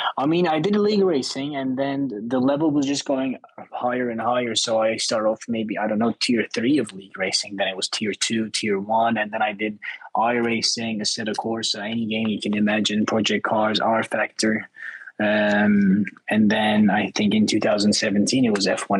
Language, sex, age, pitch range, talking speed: English, male, 20-39, 100-115 Hz, 195 wpm